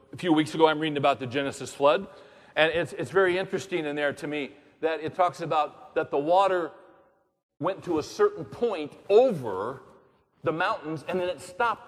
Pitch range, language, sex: 160-220 Hz, English, male